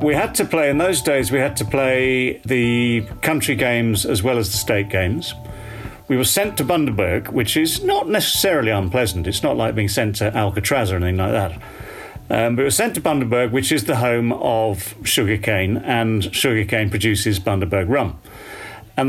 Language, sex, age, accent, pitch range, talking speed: English, male, 40-59, British, 110-140 Hz, 190 wpm